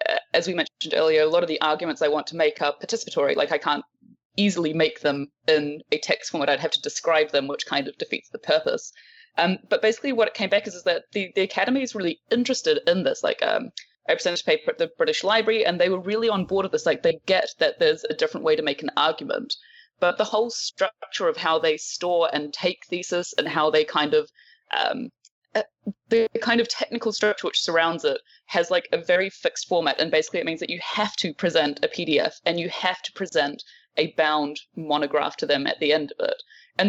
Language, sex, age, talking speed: English, female, 20-39, 235 wpm